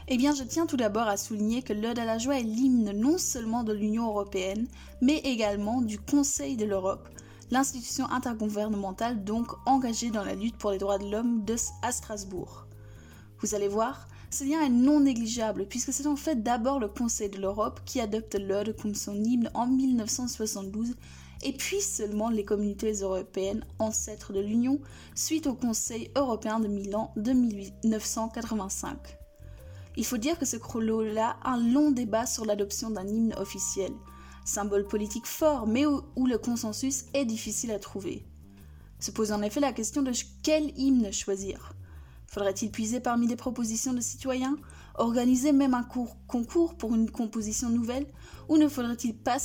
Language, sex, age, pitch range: French, female, 20-39, 210-250 Hz